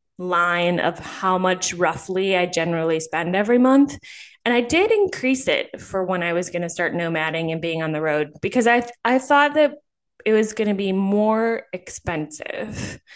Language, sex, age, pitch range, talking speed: English, female, 10-29, 175-250 Hz, 185 wpm